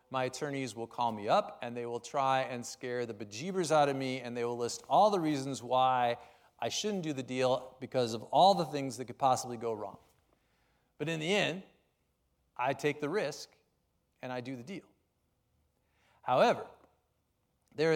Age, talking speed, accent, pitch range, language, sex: 40-59, 185 wpm, American, 120-150 Hz, English, male